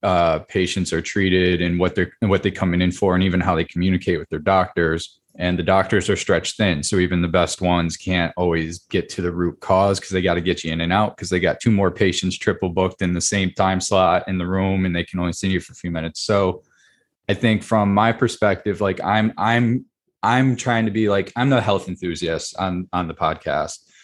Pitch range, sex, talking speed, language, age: 90-105 Hz, male, 240 wpm, English, 20-39